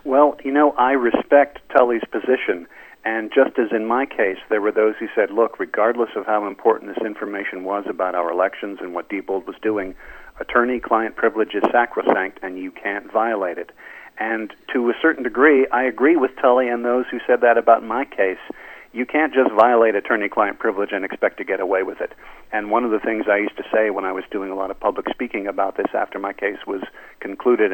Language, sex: English, male